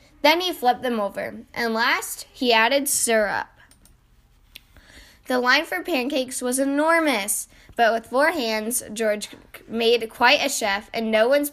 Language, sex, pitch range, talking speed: English, female, 220-290 Hz, 145 wpm